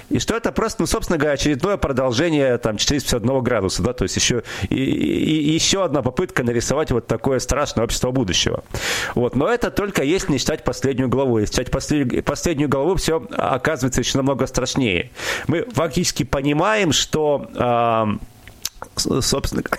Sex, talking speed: male, 160 wpm